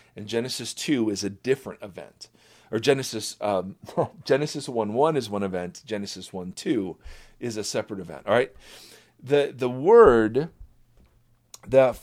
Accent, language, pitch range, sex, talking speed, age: American, English, 115-150 Hz, male, 145 wpm, 40-59